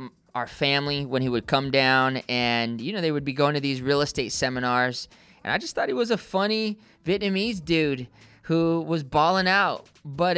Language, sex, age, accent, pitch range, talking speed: English, male, 20-39, American, 110-150 Hz, 195 wpm